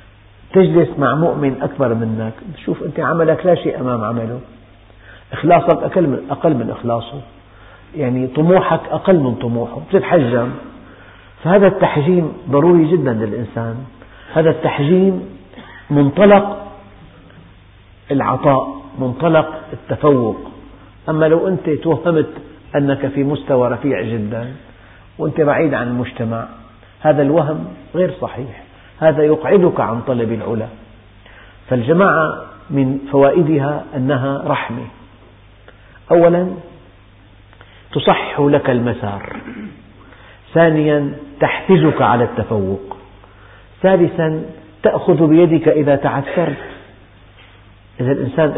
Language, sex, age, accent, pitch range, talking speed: Indonesian, male, 50-69, Lebanese, 105-155 Hz, 95 wpm